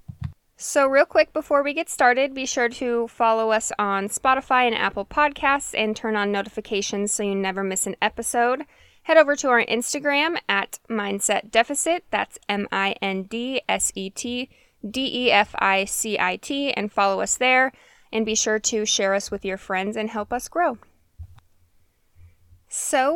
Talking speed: 140 wpm